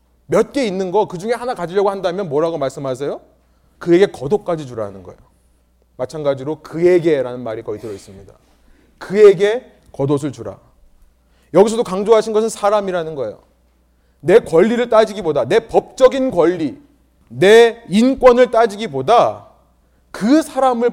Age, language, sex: 30-49, Korean, male